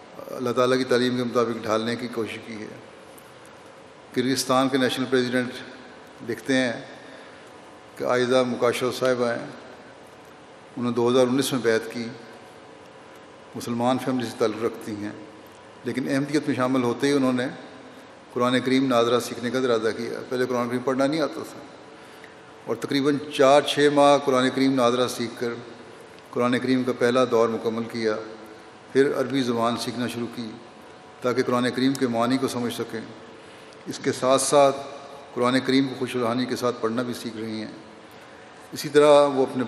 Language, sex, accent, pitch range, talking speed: English, male, Indian, 120-130 Hz, 105 wpm